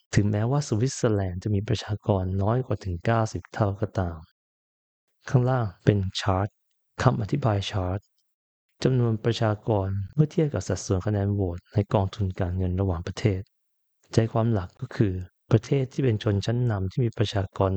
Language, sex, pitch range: Thai, male, 95-120 Hz